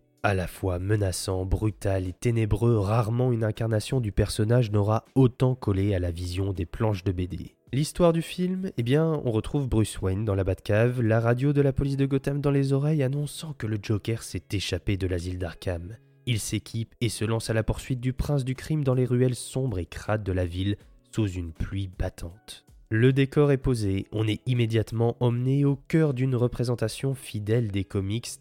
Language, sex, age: French, male, 20-39